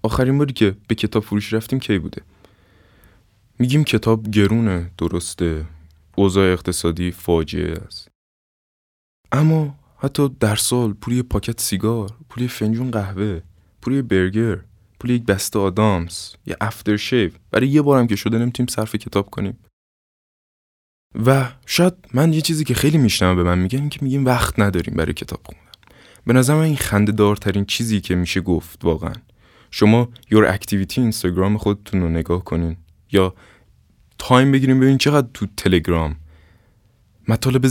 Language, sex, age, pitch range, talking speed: Persian, male, 20-39, 90-120 Hz, 140 wpm